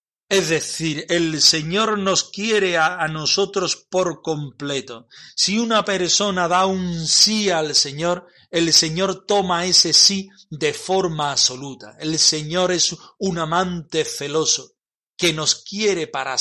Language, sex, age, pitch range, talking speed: Spanish, male, 40-59, 150-180 Hz, 130 wpm